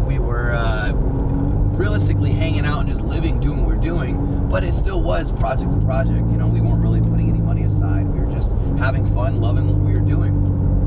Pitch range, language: 95-105 Hz, English